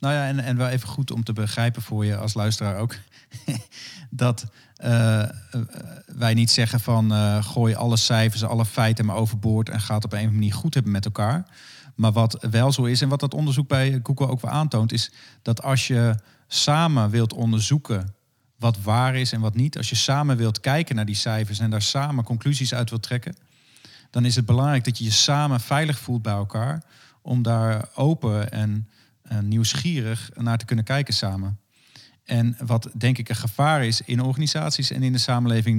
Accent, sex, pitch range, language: Dutch, male, 110-135 Hz, Dutch